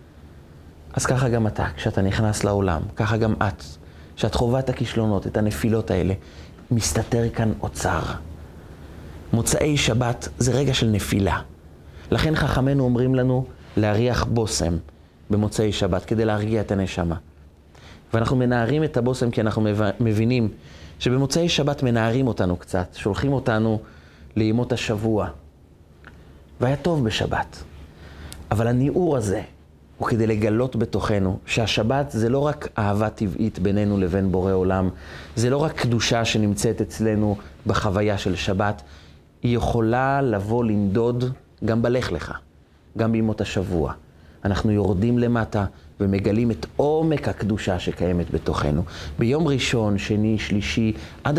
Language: Hebrew